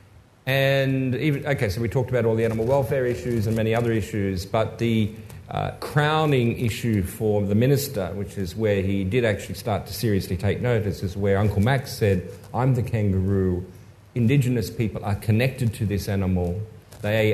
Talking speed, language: 175 wpm, English